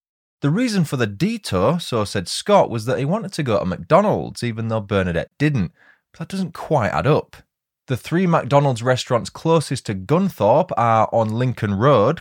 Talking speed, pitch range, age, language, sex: 180 wpm, 100-145 Hz, 20-39, English, male